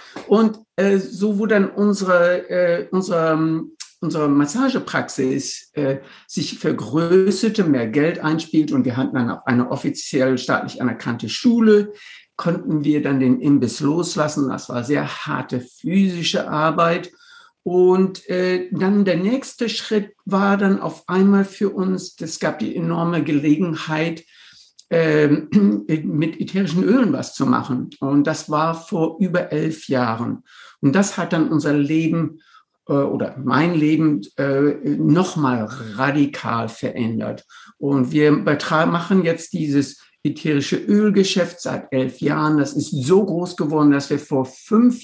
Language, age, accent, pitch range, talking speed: German, 60-79, German, 145-185 Hz, 130 wpm